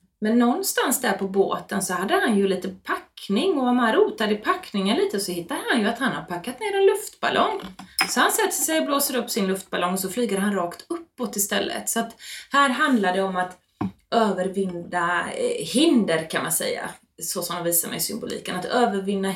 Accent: native